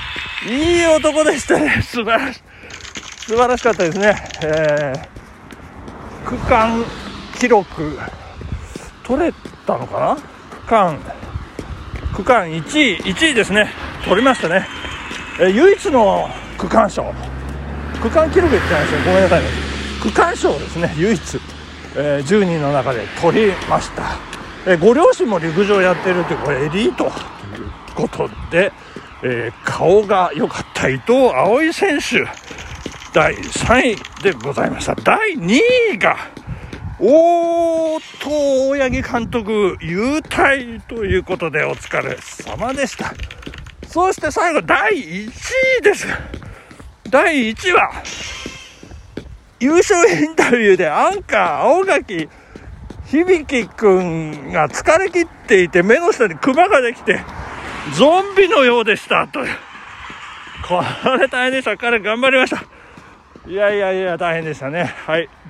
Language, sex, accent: Japanese, male, native